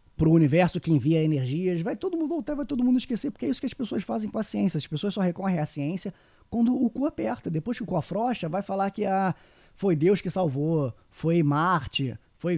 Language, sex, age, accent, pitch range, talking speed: Portuguese, male, 20-39, Brazilian, 135-175 Hz, 245 wpm